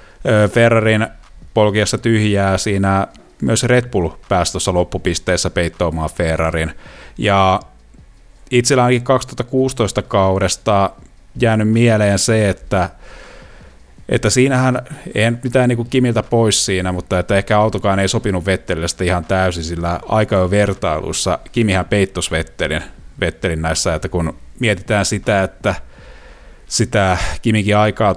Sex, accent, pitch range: male, native, 90-110 Hz